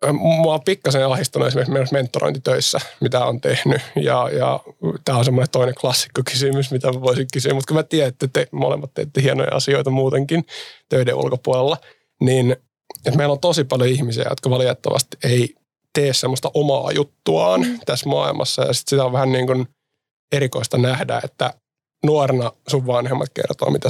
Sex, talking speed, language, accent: male, 155 wpm, Finnish, native